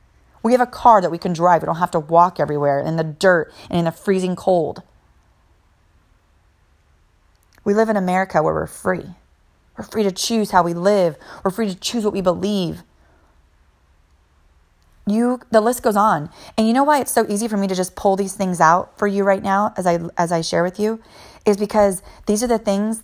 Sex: female